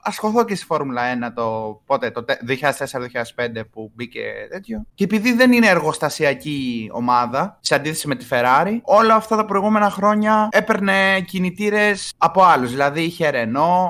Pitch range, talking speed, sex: 125-165 Hz, 150 wpm, male